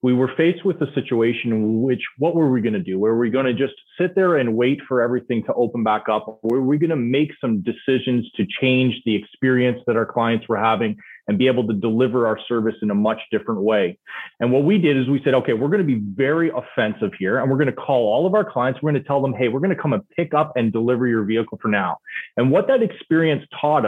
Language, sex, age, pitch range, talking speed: English, male, 30-49, 120-145 Hz, 255 wpm